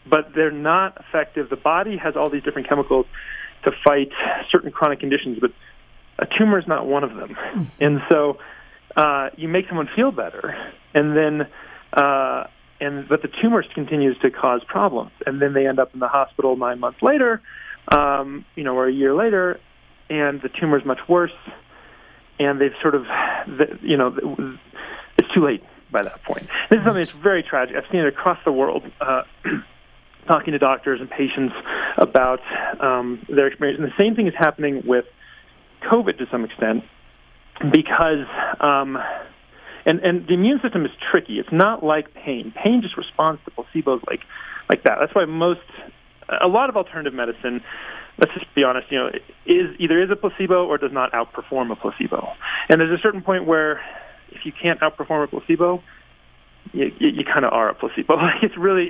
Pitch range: 135-175 Hz